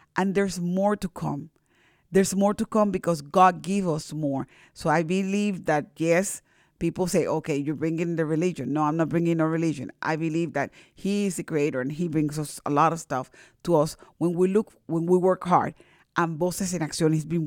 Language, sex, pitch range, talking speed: English, female, 160-185 Hz, 215 wpm